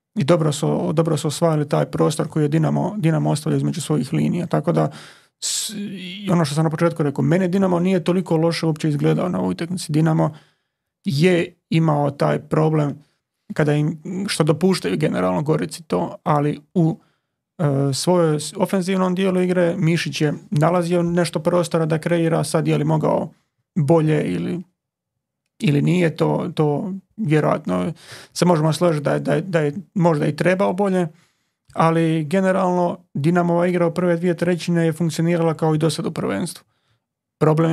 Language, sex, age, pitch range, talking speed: Croatian, male, 30-49, 155-175 Hz, 155 wpm